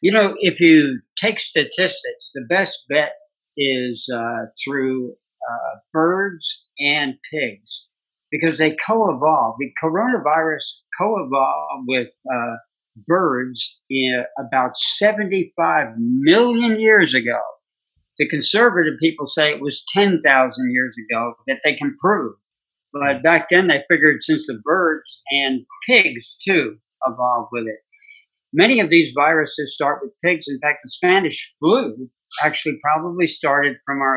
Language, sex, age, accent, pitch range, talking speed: English, male, 60-79, American, 130-175 Hz, 130 wpm